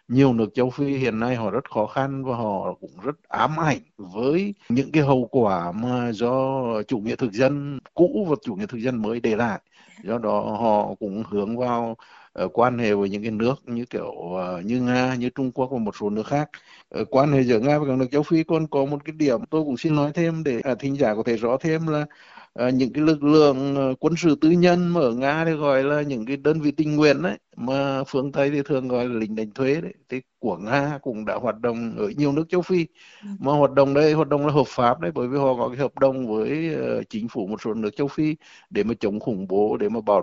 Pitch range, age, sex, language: 120-145 Hz, 60-79, male, Vietnamese